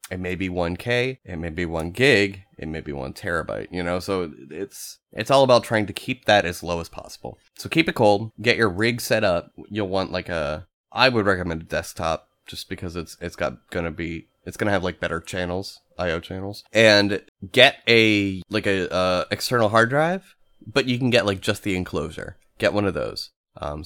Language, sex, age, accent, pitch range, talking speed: English, male, 30-49, American, 90-115 Hz, 215 wpm